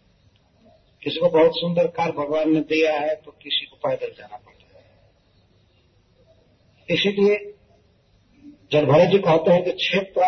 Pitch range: 155-230 Hz